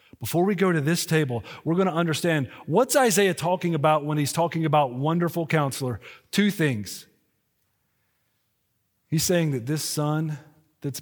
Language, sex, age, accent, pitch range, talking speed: English, male, 40-59, American, 140-185 Hz, 150 wpm